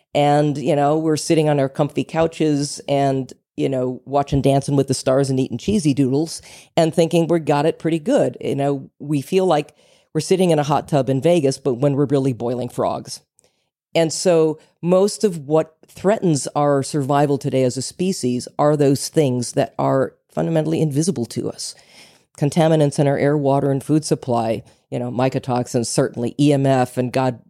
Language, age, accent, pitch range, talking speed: English, 40-59, American, 130-155 Hz, 180 wpm